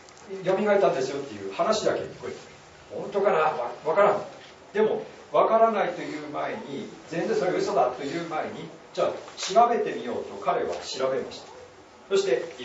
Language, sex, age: Japanese, male, 40-59